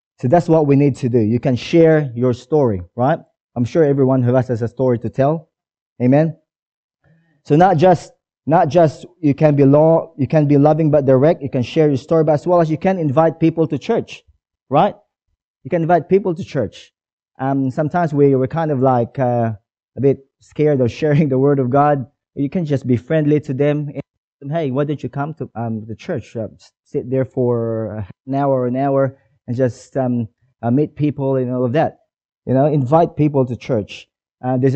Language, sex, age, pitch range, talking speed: English, male, 20-39, 125-145 Hz, 215 wpm